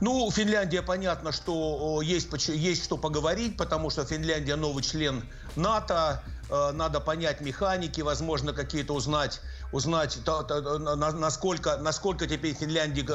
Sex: male